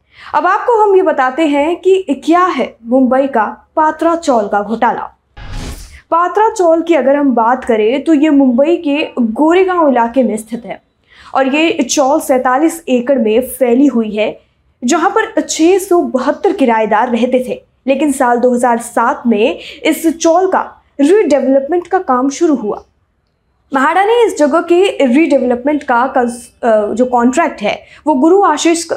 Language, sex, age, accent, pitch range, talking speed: Hindi, female, 20-39, native, 245-330 Hz, 150 wpm